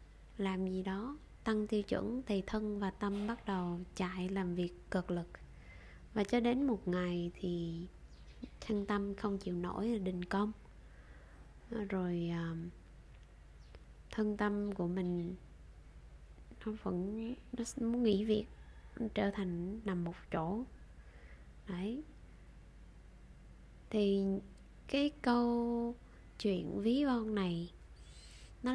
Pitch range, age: 175-210 Hz, 20-39